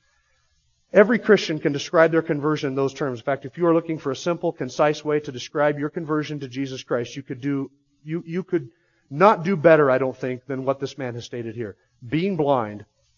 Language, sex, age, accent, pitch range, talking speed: English, male, 40-59, American, 130-190 Hz, 220 wpm